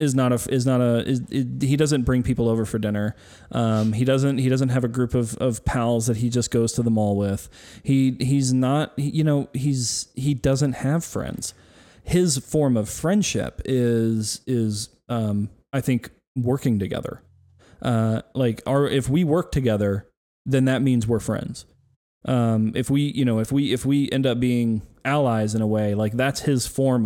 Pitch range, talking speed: 110-135 Hz, 195 wpm